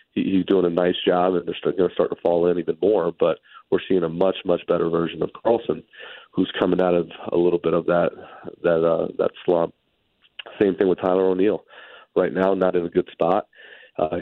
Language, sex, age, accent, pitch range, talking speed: English, male, 30-49, American, 85-95 Hz, 205 wpm